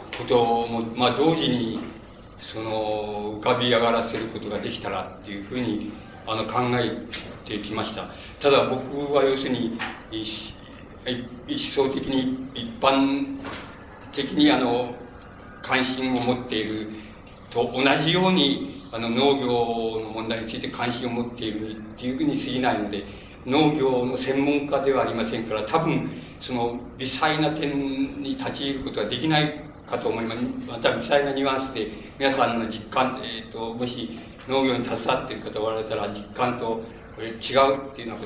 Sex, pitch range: male, 110-135 Hz